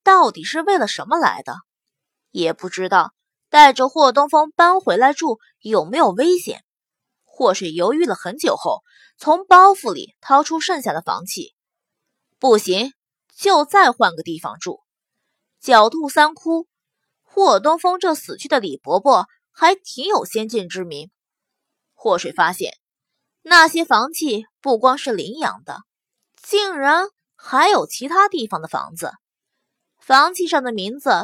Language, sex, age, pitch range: Chinese, female, 20-39, 240-360 Hz